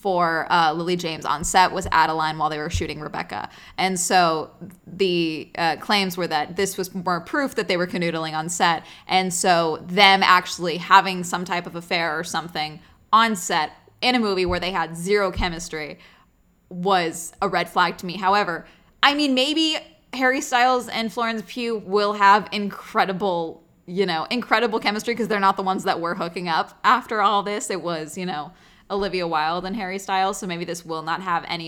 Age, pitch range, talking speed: 20-39, 175-215 Hz, 190 wpm